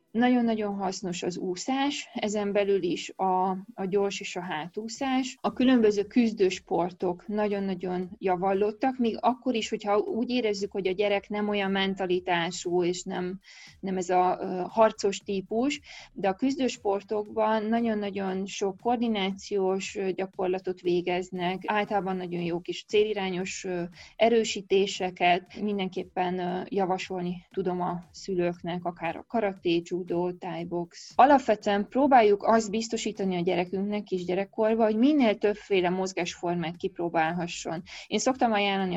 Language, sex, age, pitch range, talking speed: Hungarian, female, 20-39, 180-215 Hz, 120 wpm